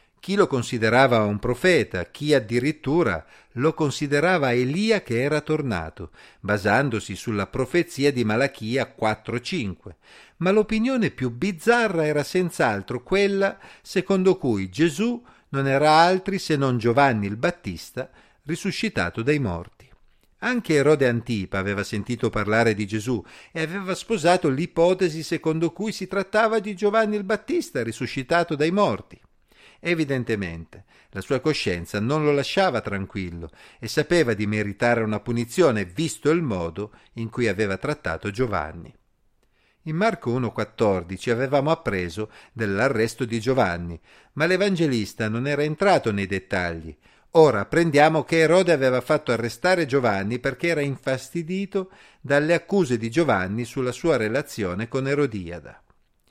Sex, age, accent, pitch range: male, 50-69, native, 110-170 Hz